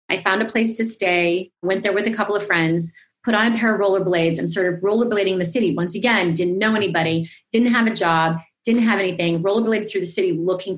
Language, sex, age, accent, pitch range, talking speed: English, female, 30-49, American, 175-210 Hz, 235 wpm